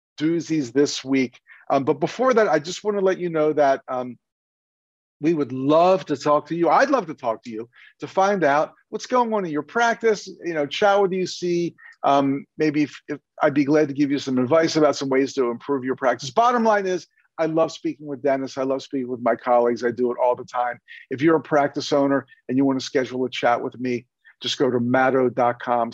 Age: 50-69